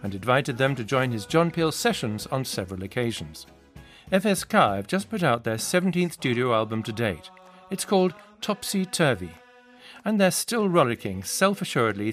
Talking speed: 160 wpm